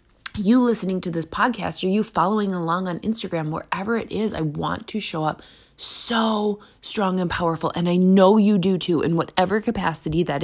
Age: 20-39